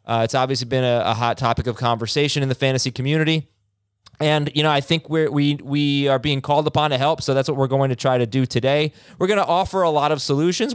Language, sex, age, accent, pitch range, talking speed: English, male, 20-39, American, 125-155 Hz, 255 wpm